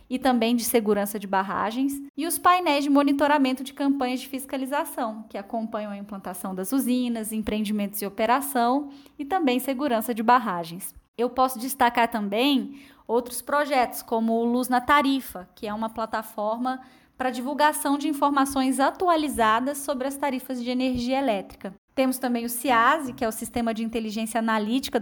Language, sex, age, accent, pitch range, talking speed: Portuguese, female, 10-29, Brazilian, 225-275 Hz, 160 wpm